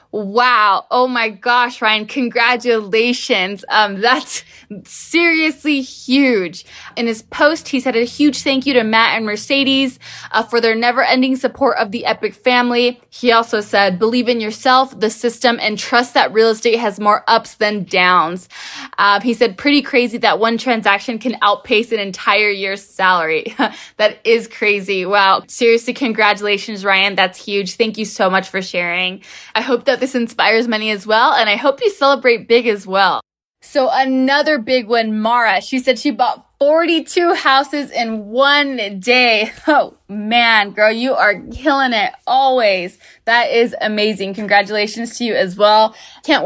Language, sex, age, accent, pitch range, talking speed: English, female, 20-39, American, 205-255 Hz, 165 wpm